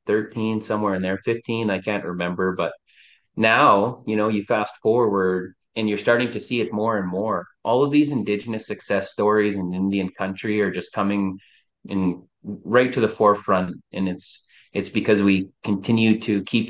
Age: 30-49